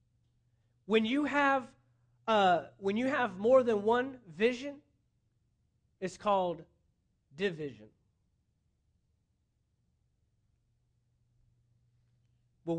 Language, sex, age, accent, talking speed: English, male, 30-49, American, 70 wpm